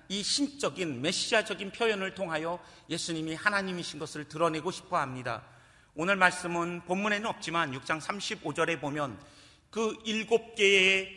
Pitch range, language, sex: 160-220 Hz, Korean, male